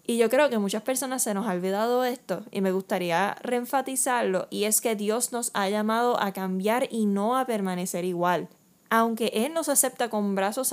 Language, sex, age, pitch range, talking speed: Spanish, female, 10-29, 195-245 Hz, 195 wpm